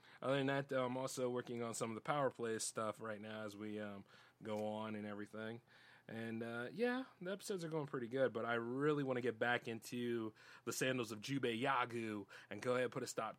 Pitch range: 110-140 Hz